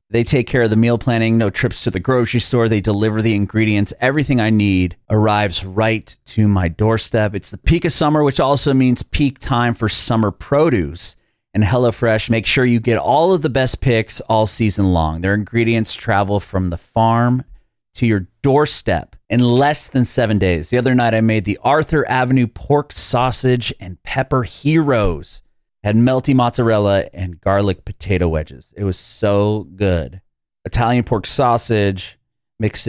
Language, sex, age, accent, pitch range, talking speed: English, male, 30-49, American, 95-120 Hz, 170 wpm